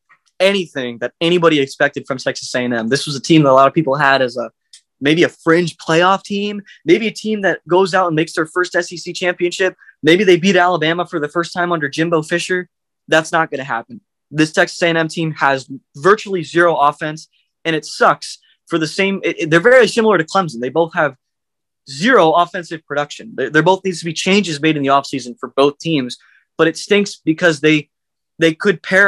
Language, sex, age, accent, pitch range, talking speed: English, male, 20-39, American, 145-180 Hz, 205 wpm